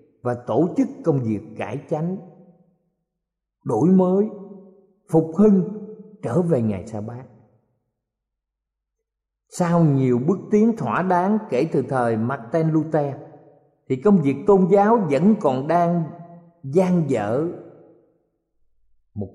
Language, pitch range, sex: Thai, 125-195 Hz, male